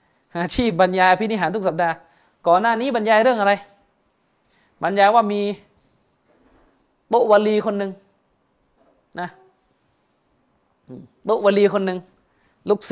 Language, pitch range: Thai, 180-230 Hz